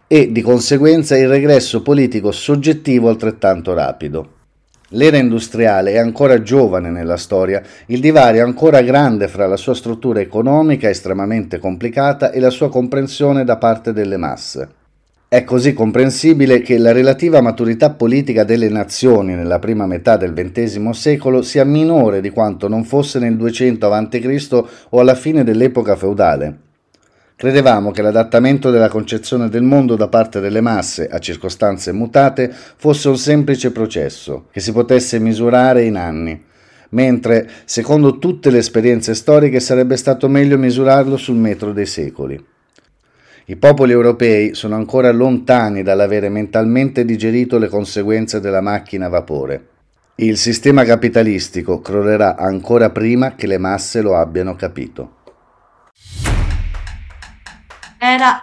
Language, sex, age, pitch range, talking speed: Italian, male, 30-49, 105-135 Hz, 135 wpm